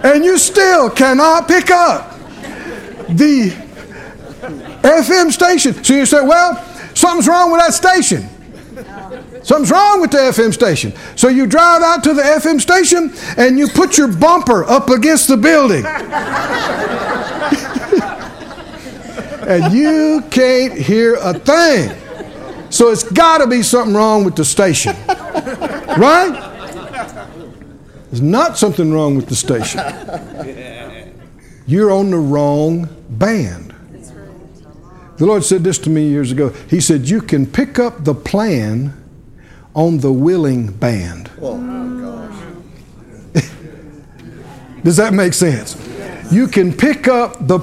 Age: 60-79